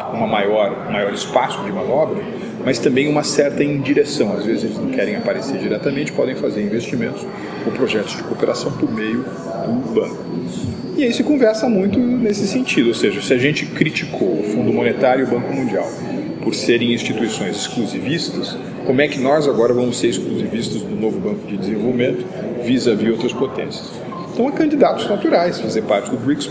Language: Portuguese